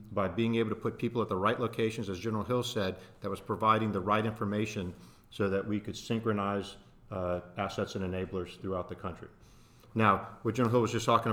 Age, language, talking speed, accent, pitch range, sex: 40-59, English, 205 wpm, American, 100-115 Hz, male